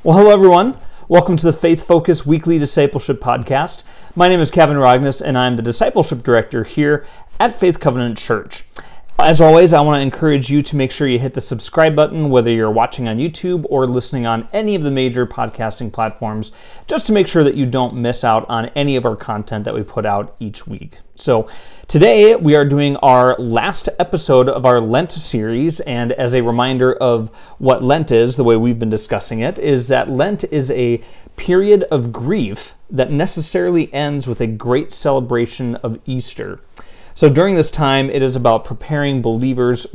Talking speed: 190 wpm